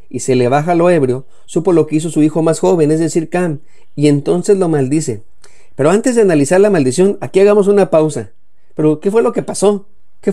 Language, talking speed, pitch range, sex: Spanish, 220 wpm, 130-175 Hz, male